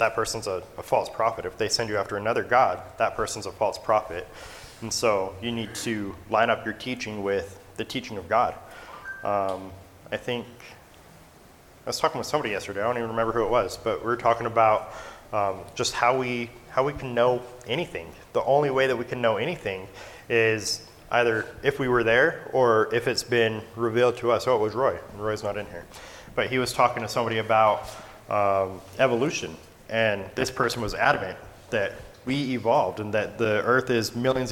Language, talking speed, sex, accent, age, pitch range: English, 200 wpm, male, American, 30-49, 105-125 Hz